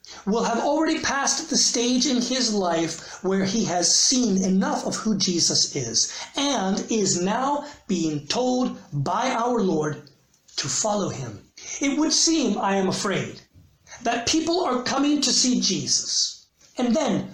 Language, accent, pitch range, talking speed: English, American, 170-235 Hz, 150 wpm